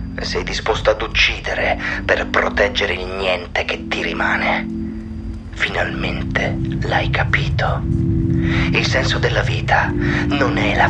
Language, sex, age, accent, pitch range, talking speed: Italian, male, 30-49, native, 80-105 Hz, 115 wpm